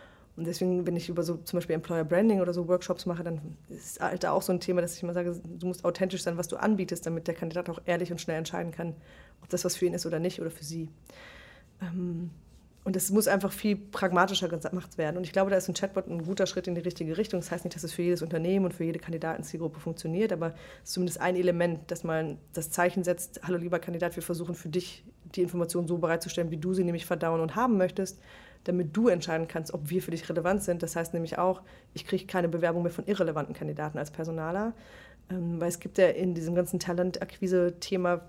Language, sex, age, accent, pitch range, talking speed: German, female, 30-49, German, 165-185 Hz, 235 wpm